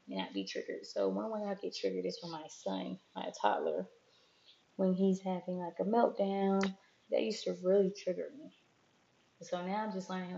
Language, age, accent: English, 20-39, American